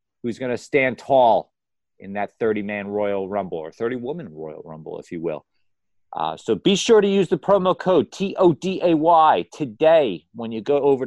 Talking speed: 205 wpm